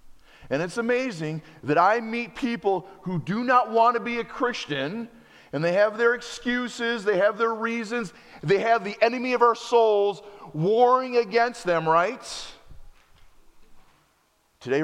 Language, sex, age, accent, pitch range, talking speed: English, male, 40-59, American, 115-185 Hz, 145 wpm